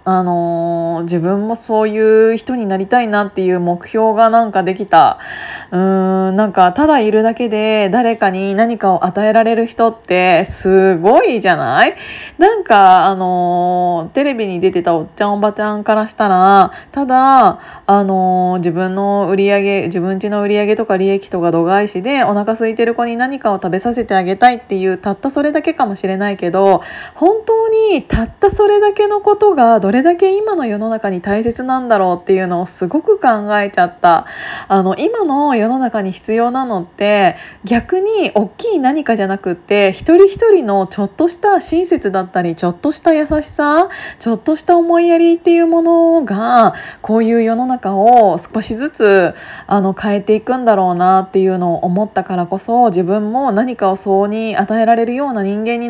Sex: female